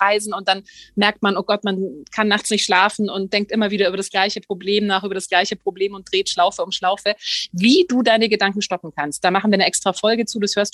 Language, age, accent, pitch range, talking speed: German, 30-49, German, 195-235 Hz, 245 wpm